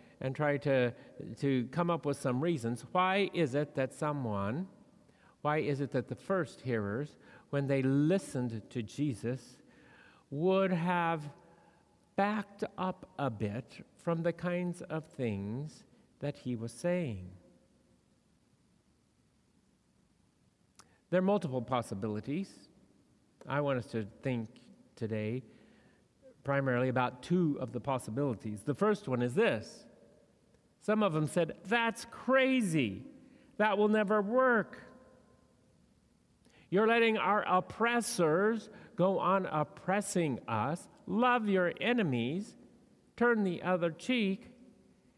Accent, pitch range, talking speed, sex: American, 135-195 Hz, 115 wpm, male